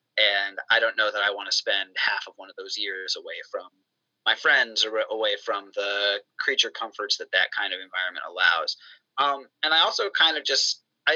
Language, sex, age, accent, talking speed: English, male, 30-49, American, 210 wpm